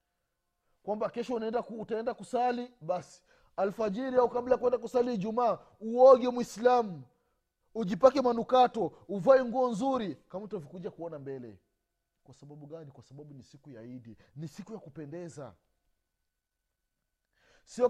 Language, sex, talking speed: Swahili, male, 125 wpm